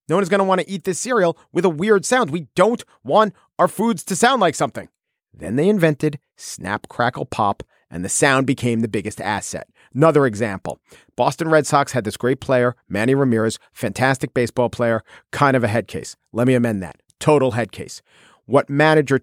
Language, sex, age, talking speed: English, male, 40-59, 195 wpm